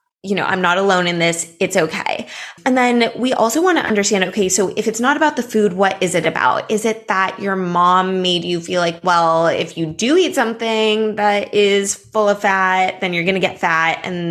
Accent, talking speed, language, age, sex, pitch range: American, 230 wpm, English, 20-39, female, 170-225 Hz